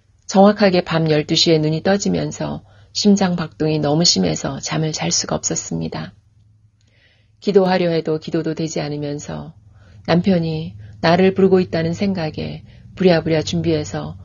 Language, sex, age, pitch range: Korean, female, 40-59, 105-175 Hz